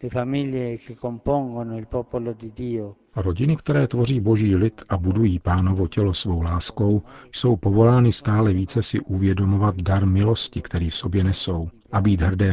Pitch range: 90-110 Hz